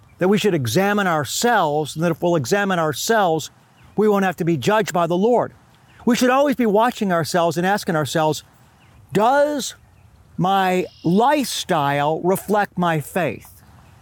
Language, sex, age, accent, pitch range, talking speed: English, male, 50-69, American, 135-205 Hz, 150 wpm